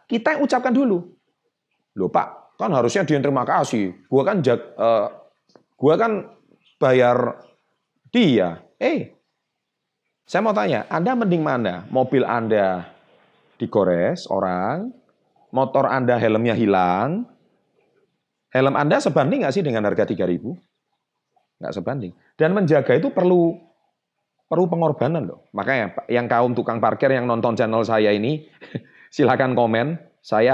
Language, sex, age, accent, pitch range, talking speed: Indonesian, male, 30-49, native, 115-175 Hz, 125 wpm